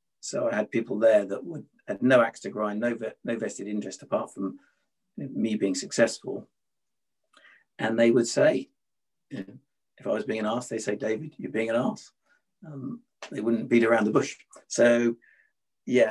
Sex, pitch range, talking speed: male, 115-135 Hz, 175 wpm